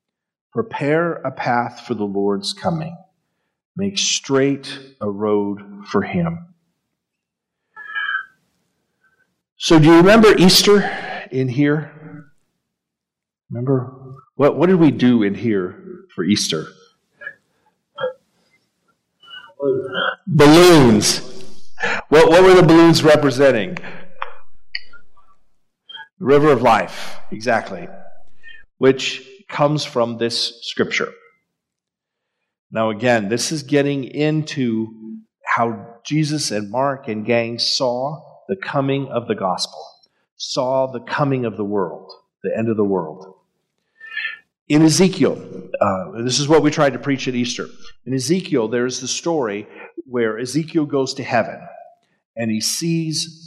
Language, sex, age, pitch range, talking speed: English, male, 50-69, 125-180 Hz, 115 wpm